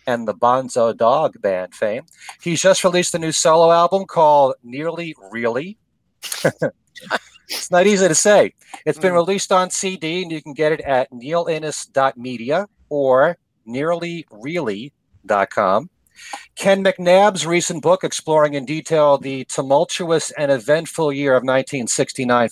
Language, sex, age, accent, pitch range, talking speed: English, male, 40-59, American, 130-180 Hz, 130 wpm